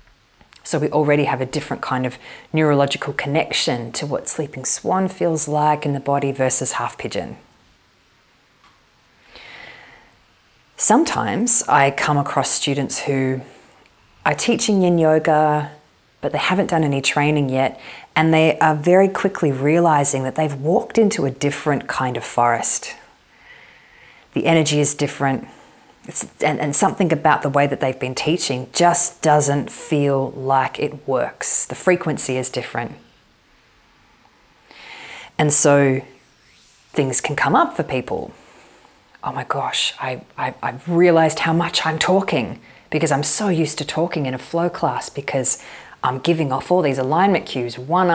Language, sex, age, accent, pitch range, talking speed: English, female, 30-49, Australian, 135-165 Hz, 140 wpm